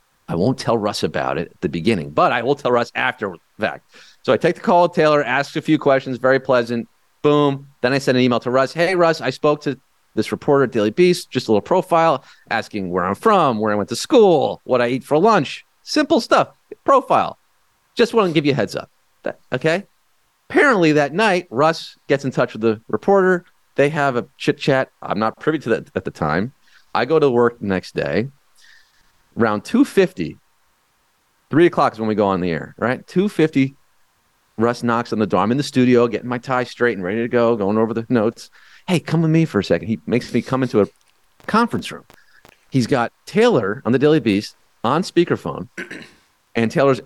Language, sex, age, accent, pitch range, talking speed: English, male, 30-49, American, 115-160 Hz, 215 wpm